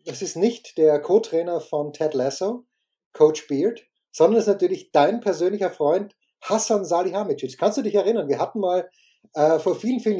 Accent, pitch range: German, 160-220 Hz